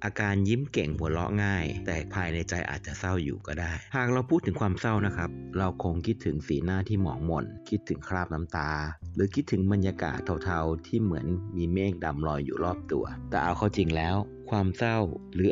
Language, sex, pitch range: Thai, male, 85-105 Hz